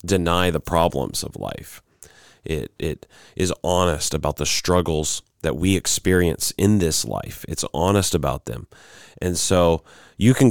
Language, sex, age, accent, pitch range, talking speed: English, male, 30-49, American, 80-100 Hz, 150 wpm